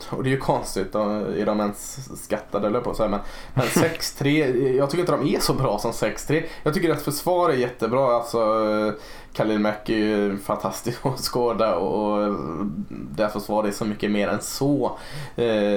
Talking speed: 165 wpm